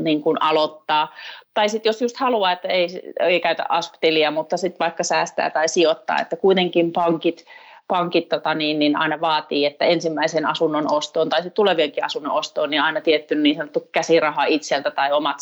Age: 30-49